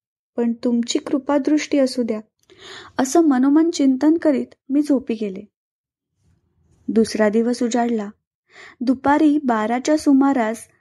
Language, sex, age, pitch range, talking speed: Marathi, female, 20-39, 235-295 Hz, 105 wpm